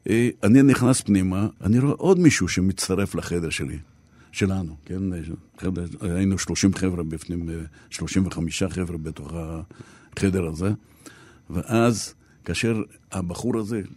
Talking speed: 115 wpm